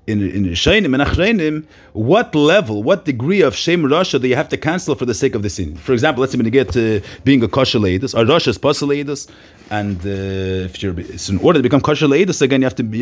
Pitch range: 100-140 Hz